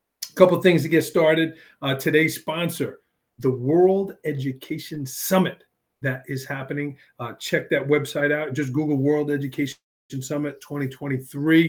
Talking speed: 140 wpm